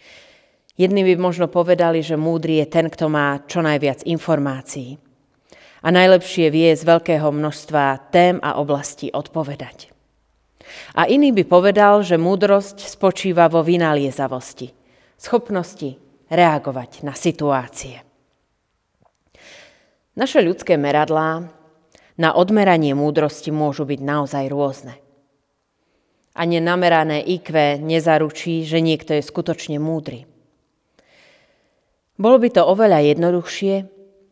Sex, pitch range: female, 145-175 Hz